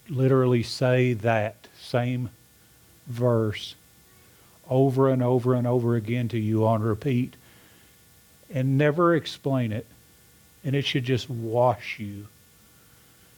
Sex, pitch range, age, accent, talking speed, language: male, 110-135 Hz, 50-69, American, 110 wpm, English